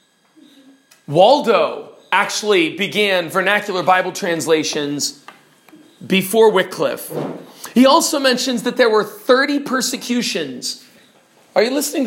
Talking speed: 95 wpm